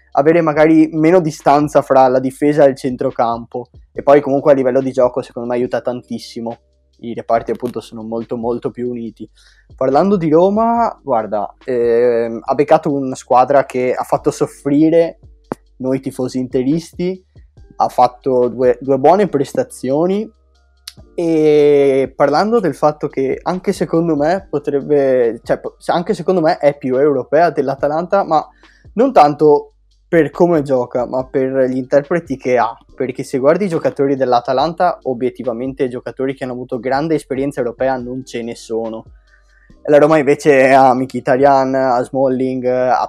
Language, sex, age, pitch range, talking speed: Italian, male, 20-39, 125-155 Hz, 150 wpm